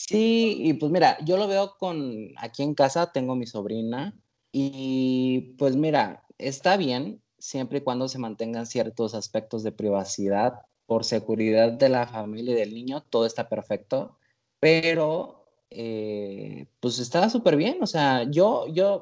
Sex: male